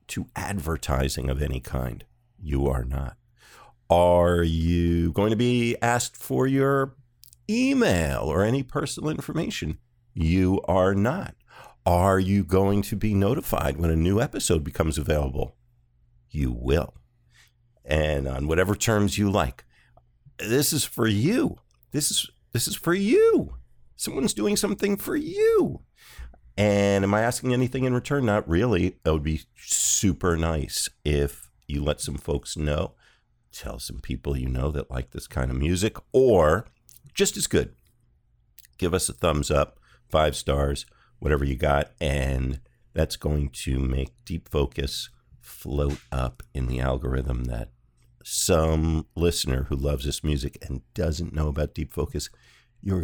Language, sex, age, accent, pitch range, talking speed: English, male, 50-69, American, 70-115 Hz, 145 wpm